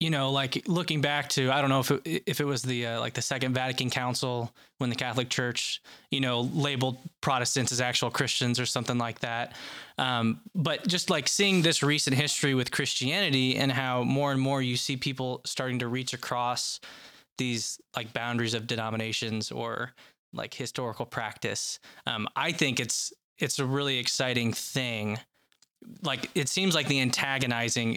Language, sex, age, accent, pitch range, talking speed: English, male, 20-39, American, 115-135 Hz, 175 wpm